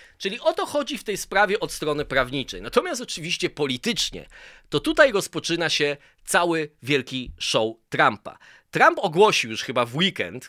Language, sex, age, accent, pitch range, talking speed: Polish, male, 20-39, native, 115-160 Hz, 155 wpm